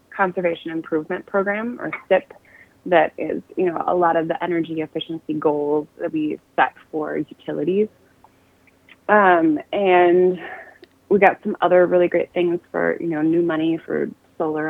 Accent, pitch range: American, 170-210 Hz